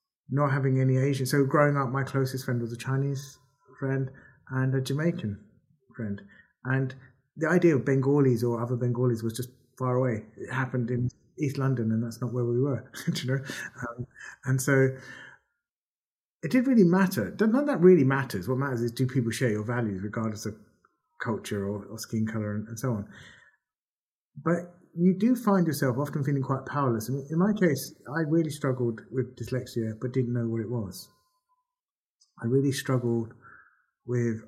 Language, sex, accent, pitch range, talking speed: English, male, British, 120-145 Hz, 170 wpm